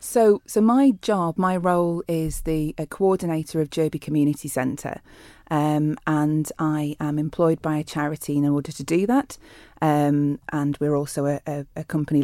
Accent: British